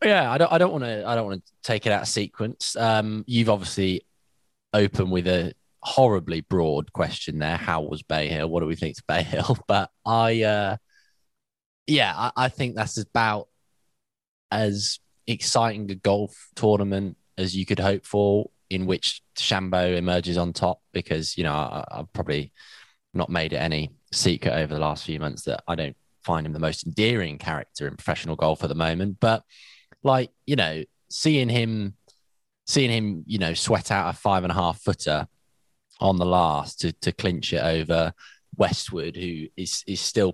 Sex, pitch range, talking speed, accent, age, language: male, 80-105 Hz, 185 wpm, British, 20-39, English